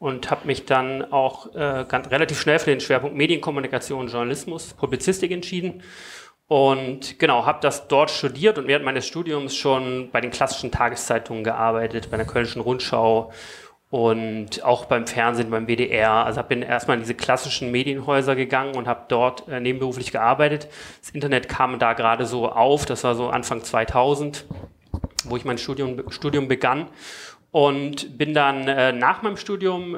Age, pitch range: 30-49, 120-145 Hz